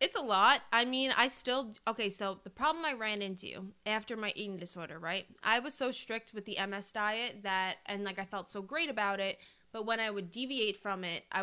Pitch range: 190-225 Hz